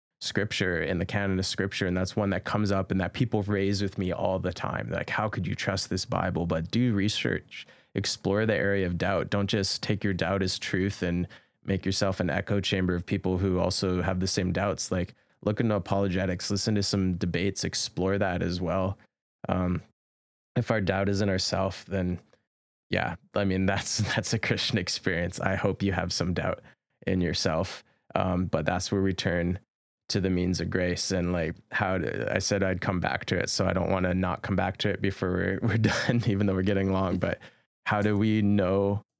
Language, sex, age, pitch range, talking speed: English, male, 20-39, 90-100 Hz, 210 wpm